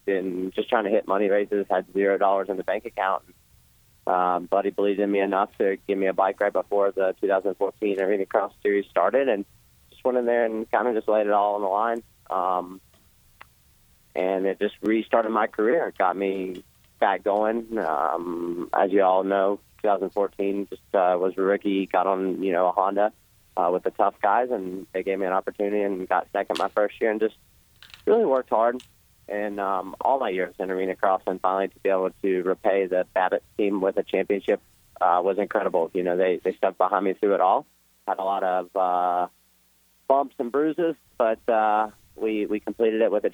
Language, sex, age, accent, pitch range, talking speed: English, male, 20-39, American, 95-105 Hz, 205 wpm